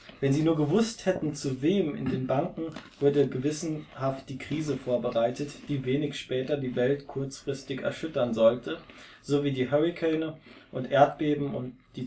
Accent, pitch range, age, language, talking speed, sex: German, 125-155 Hz, 20-39, German, 155 wpm, male